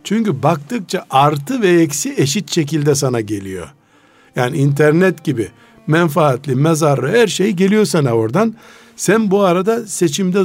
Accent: native